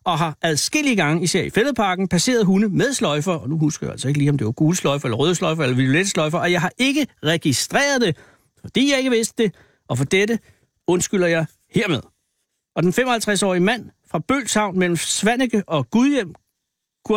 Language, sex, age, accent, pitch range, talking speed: Danish, male, 60-79, native, 160-215 Hz, 190 wpm